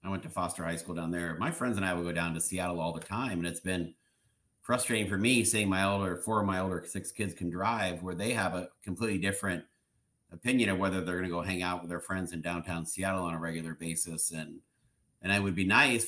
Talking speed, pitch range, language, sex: 255 wpm, 90-110 Hz, English, male